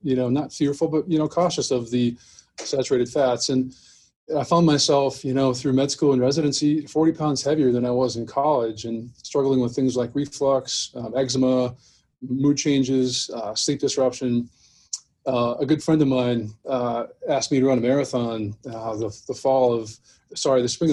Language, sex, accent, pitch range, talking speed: English, male, American, 125-140 Hz, 185 wpm